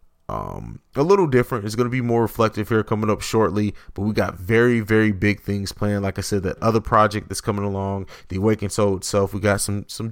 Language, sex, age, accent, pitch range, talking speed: English, male, 20-39, American, 100-120 Hz, 230 wpm